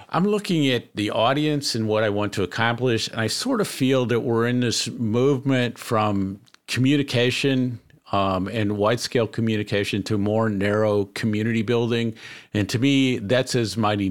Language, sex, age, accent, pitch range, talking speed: English, male, 50-69, American, 100-120 Hz, 160 wpm